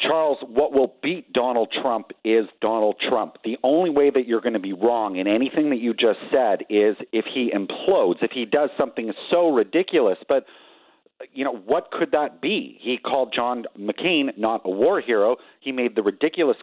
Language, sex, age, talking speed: English, male, 40-59, 190 wpm